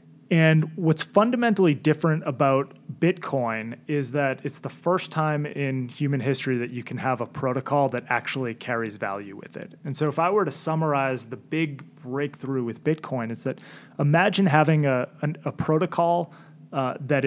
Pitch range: 120-155 Hz